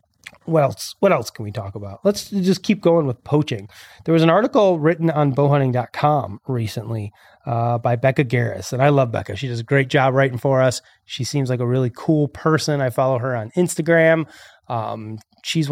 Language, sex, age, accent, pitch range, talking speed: English, male, 30-49, American, 125-155 Hz, 200 wpm